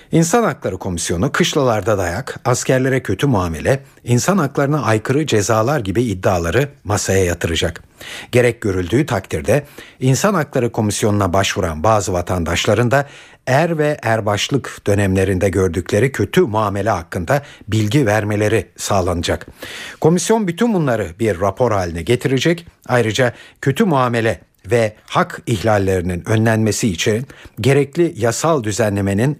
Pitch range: 95-140 Hz